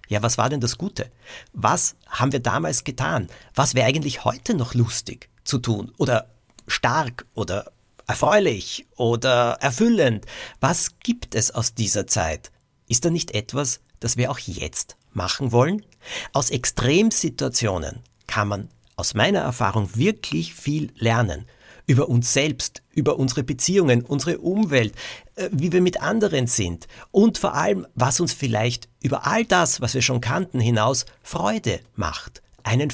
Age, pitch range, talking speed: 50-69, 110-135 Hz, 150 wpm